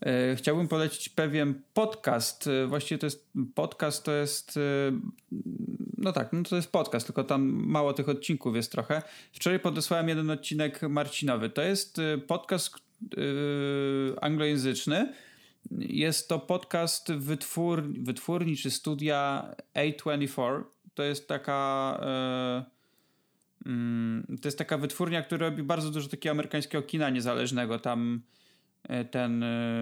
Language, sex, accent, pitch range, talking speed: Polish, male, native, 135-170 Hz, 115 wpm